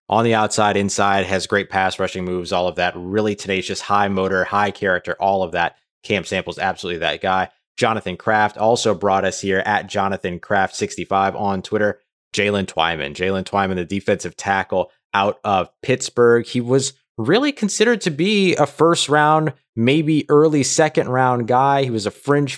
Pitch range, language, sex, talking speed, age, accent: 100-130 Hz, English, male, 180 wpm, 30-49, American